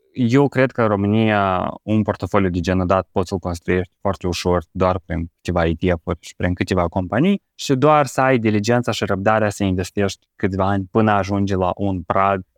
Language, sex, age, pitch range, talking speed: Romanian, male, 20-39, 90-110 Hz, 190 wpm